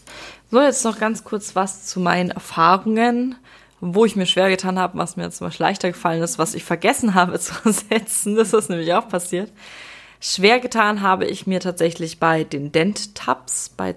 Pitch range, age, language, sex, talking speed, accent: 165-215 Hz, 20-39, German, female, 185 wpm, German